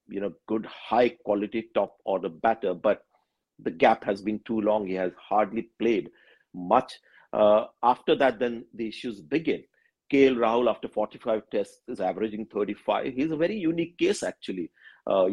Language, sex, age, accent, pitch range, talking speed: English, male, 50-69, Indian, 110-140 Hz, 165 wpm